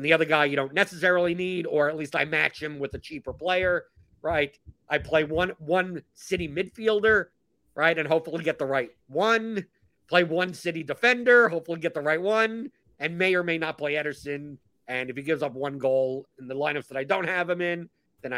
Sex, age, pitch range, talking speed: male, 50-69, 135-175 Hz, 210 wpm